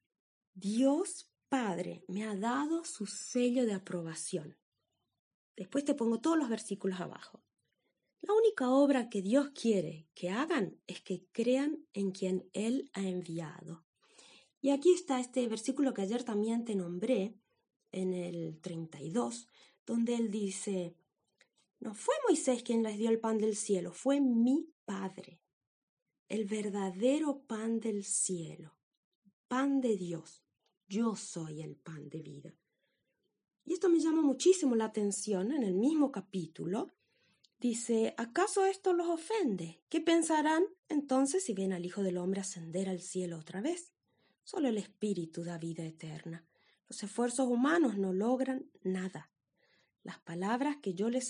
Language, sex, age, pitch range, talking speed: Spanish, female, 30-49, 185-270 Hz, 145 wpm